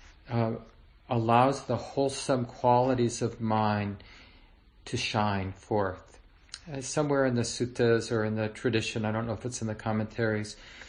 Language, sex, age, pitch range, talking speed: English, male, 40-59, 105-125 Hz, 150 wpm